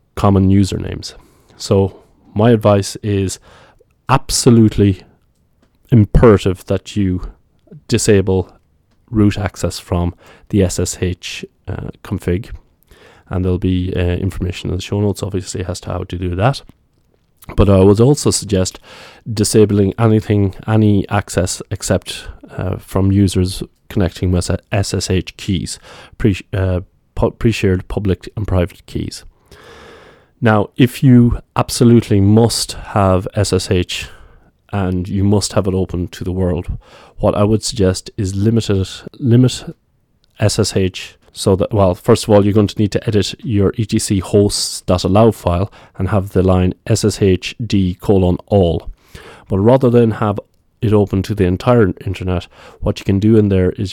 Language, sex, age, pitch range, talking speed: English, male, 20-39, 90-110 Hz, 135 wpm